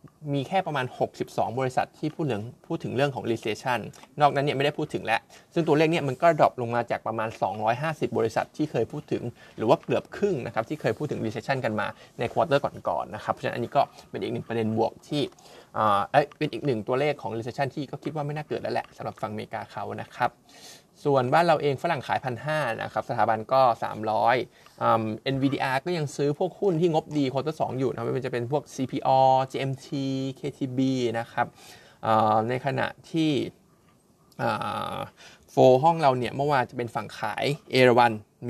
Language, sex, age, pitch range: Thai, male, 20-39, 115-150 Hz